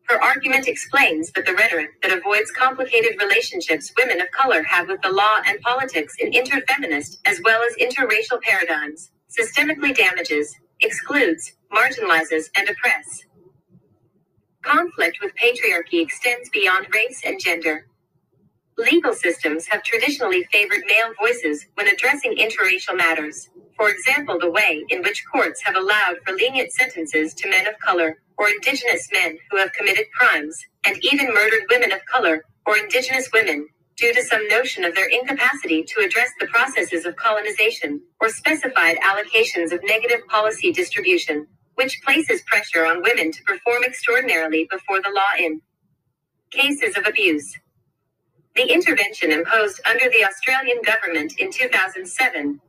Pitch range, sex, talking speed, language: 170-275 Hz, female, 145 wpm, English